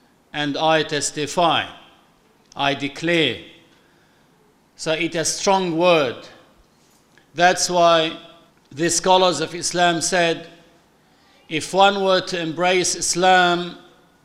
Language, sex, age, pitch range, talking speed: Arabic, male, 50-69, 155-185 Hz, 100 wpm